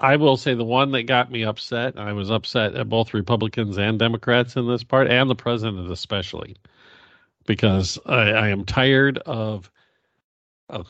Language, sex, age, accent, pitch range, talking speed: English, male, 50-69, American, 105-130 Hz, 170 wpm